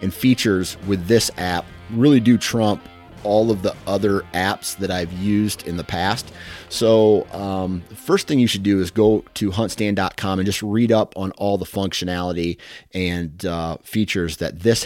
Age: 30-49